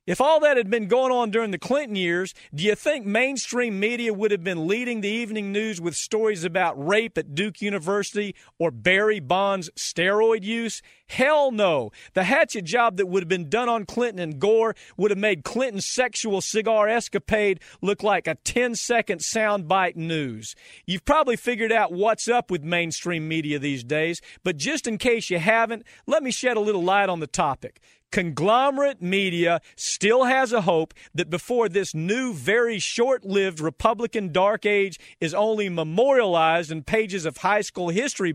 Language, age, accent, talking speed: English, 40-59, American, 175 wpm